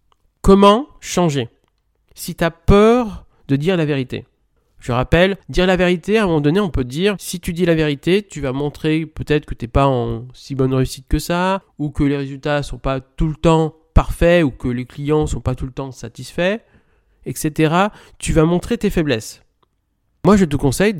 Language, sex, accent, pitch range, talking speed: French, male, French, 130-175 Hz, 210 wpm